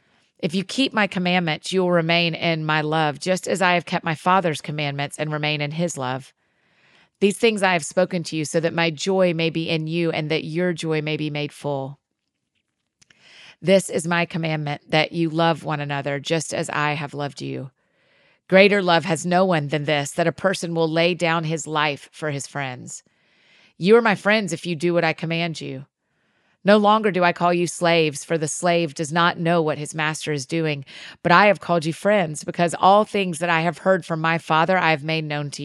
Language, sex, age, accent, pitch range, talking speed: English, female, 40-59, American, 155-180 Hz, 220 wpm